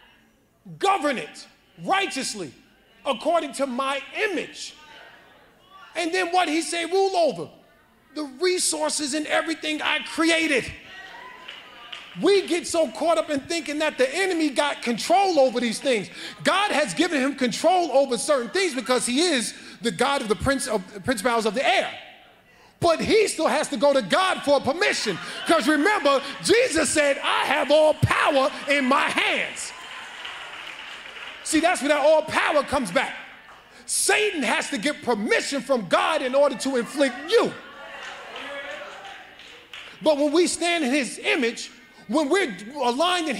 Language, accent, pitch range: English, American, 270-335 Hz